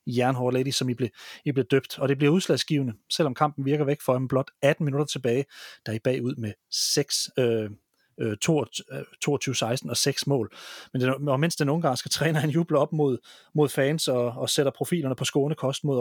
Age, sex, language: 30-49, male, Danish